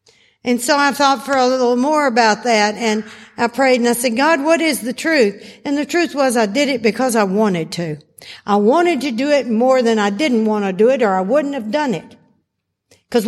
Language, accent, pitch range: English, American, 205-265 Hz